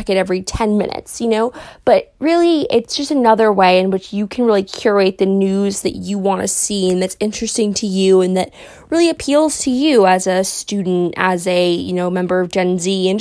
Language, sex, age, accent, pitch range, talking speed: English, female, 20-39, American, 190-255 Hz, 220 wpm